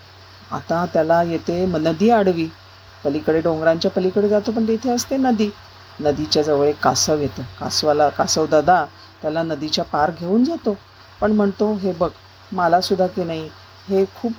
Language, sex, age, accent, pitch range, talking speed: Marathi, female, 50-69, native, 140-200 Hz, 145 wpm